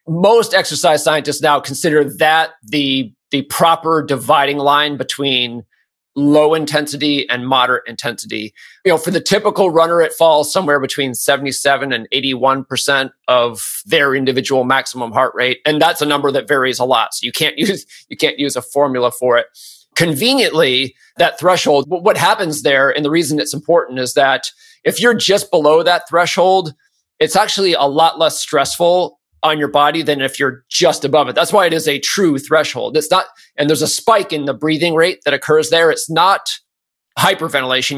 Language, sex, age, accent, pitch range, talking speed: English, male, 30-49, American, 135-170 Hz, 180 wpm